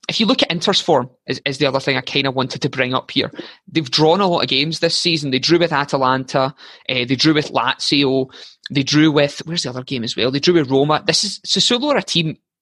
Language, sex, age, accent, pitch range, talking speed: English, male, 20-39, British, 135-160 Hz, 260 wpm